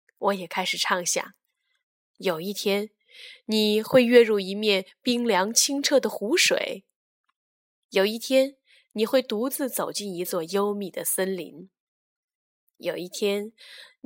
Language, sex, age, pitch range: Chinese, female, 10-29, 195-250 Hz